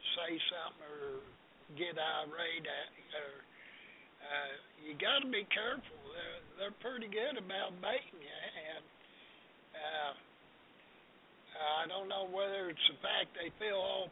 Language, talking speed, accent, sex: English, 135 wpm, American, male